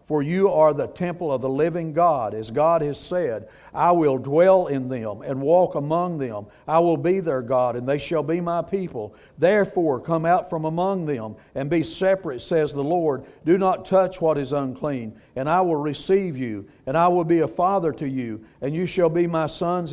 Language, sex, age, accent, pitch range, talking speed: English, male, 50-69, American, 140-175 Hz, 210 wpm